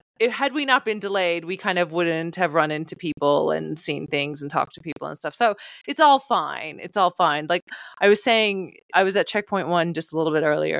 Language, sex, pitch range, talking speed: English, female, 170-235 Hz, 240 wpm